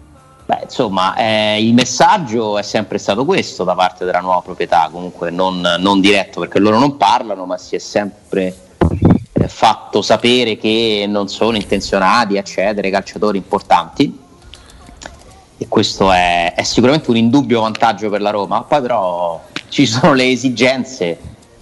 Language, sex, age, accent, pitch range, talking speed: Italian, male, 30-49, native, 95-125 Hz, 150 wpm